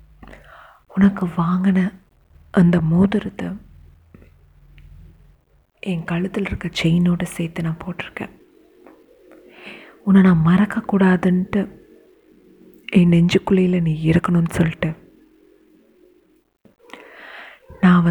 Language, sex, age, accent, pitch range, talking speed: Tamil, female, 30-49, native, 160-195 Hz, 65 wpm